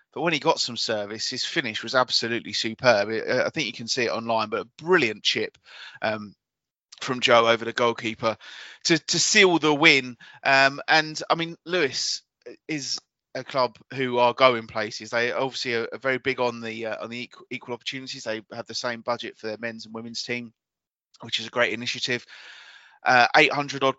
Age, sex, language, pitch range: 30-49, male, English, 115-135 Hz